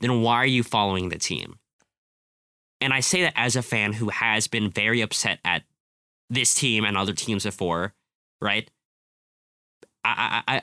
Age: 10-29